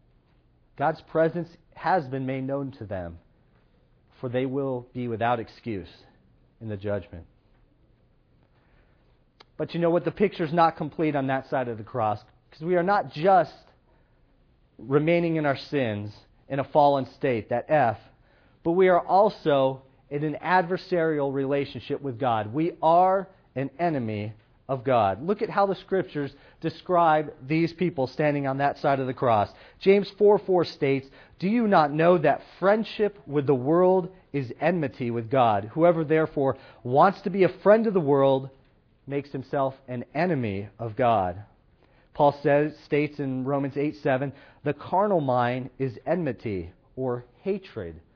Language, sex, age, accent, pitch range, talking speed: English, male, 40-59, American, 125-165 Hz, 155 wpm